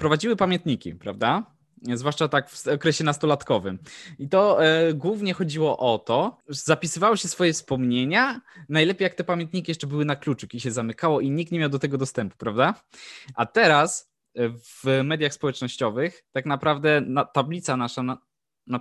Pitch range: 130-160 Hz